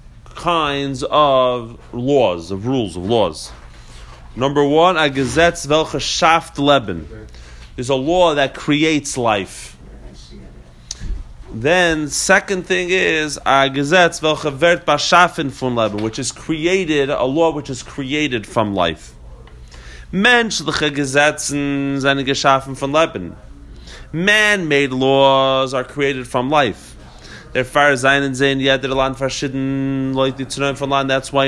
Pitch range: 130-150 Hz